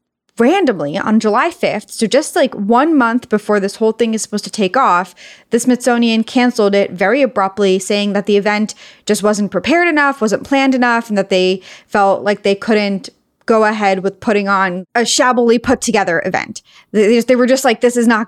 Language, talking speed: English, 195 wpm